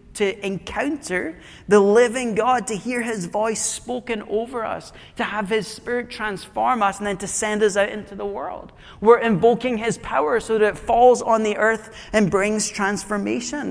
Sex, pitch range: male, 190-230 Hz